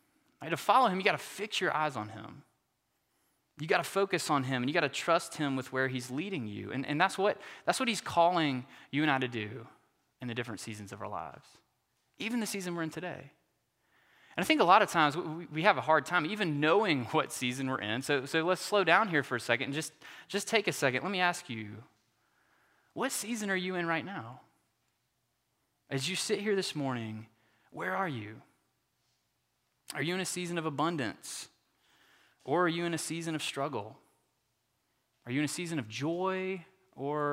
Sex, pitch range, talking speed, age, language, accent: male, 130-175 Hz, 210 wpm, 20-39, English, American